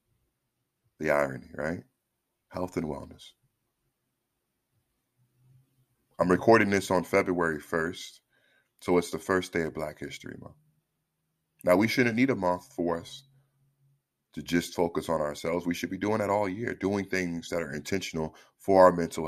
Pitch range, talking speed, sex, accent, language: 90-120 Hz, 155 wpm, male, American, English